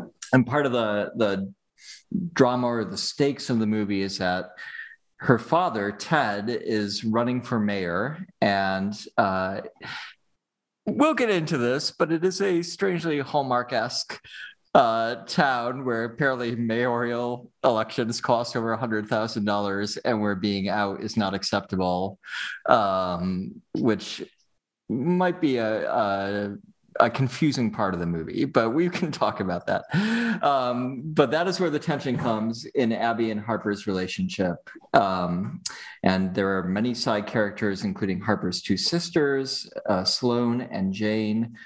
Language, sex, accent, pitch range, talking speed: English, male, American, 100-135 Hz, 135 wpm